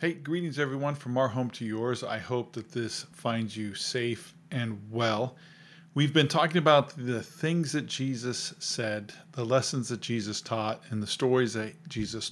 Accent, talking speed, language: American, 175 wpm, English